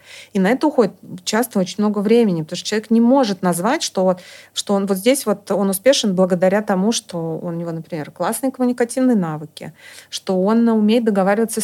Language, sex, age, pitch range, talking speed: Russian, female, 30-49, 185-235 Hz, 185 wpm